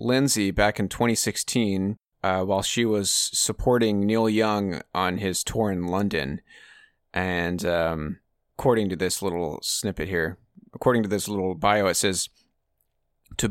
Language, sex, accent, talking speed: English, male, American, 140 wpm